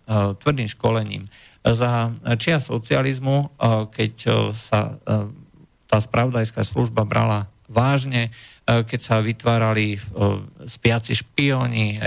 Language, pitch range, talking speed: Slovak, 110-125 Hz, 85 wpm